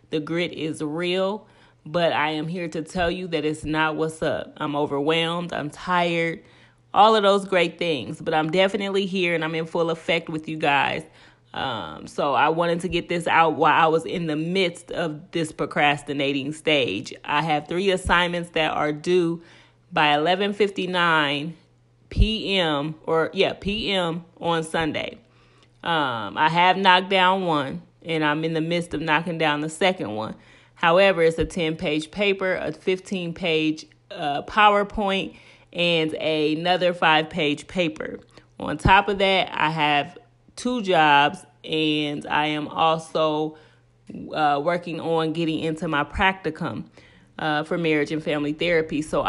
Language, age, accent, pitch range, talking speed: English, 30-49, American, 155-180 Hz, 150 wpm